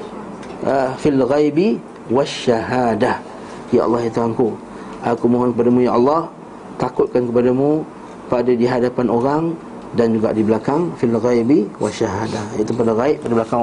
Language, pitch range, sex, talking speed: Malay, 130-200 Hz, male, 120 wpm